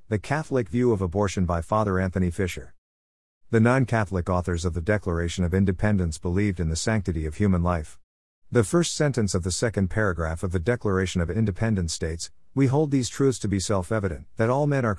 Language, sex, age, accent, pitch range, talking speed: English, male, 50-69, American, 90-110 Hz, 190 wpm